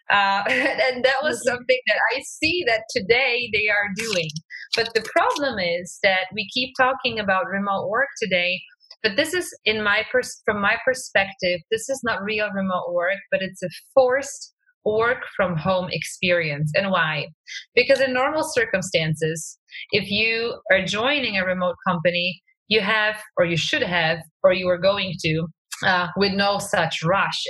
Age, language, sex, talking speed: 20-39, English, female, 170 wpm